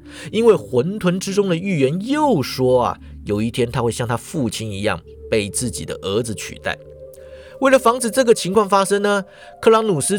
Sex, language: male, Chinese